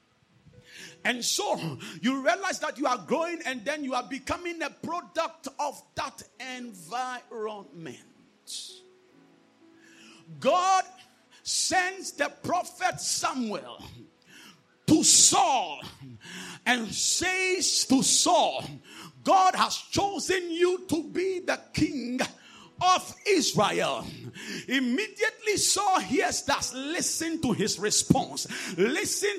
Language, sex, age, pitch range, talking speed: English, male, 50-69, 255-365 Hz, 100 wpm